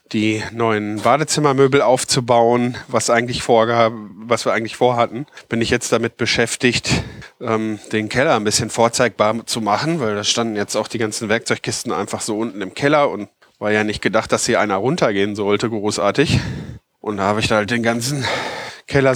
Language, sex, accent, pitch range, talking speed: German, male, German, 110-130 Hz, 180 wpm